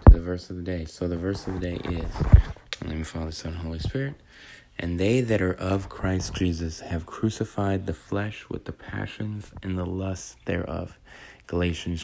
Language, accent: English, American